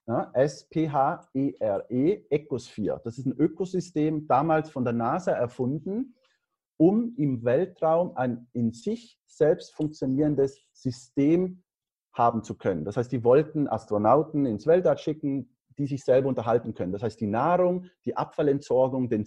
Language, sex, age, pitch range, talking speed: German, male, 40-59, 115-150 Hz, 135 wpm